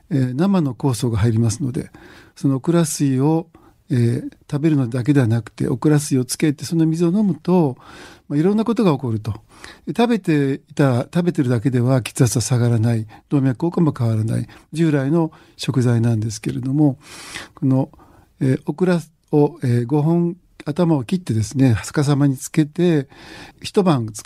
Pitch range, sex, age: 125-165 Hz, male, 50-69